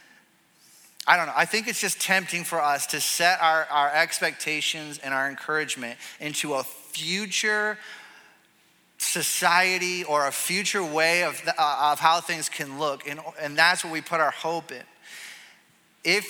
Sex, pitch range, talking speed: male, 165-205 Hz, 160 wpm